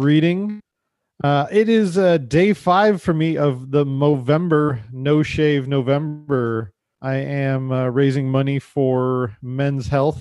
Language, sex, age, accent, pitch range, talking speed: English, male, 40-59, American, 130-145 Hz, 135 wpm